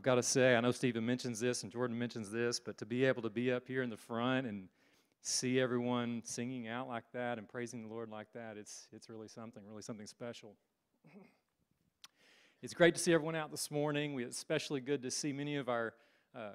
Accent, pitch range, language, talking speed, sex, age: American, 115-135 Hz, English, 220 wpm, male, 40-59